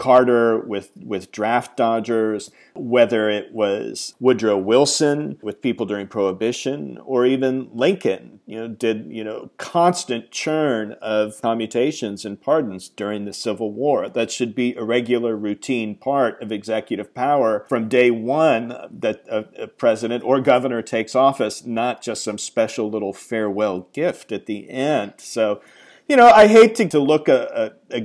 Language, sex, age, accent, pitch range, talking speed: English, male, 40-59, American, 105-130 Hz, 160 wpm